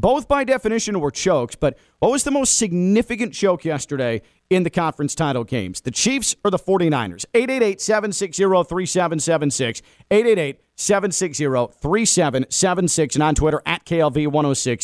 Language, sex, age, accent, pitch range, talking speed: English, male, 40-59, American, 145-185 Hz, 120 wpm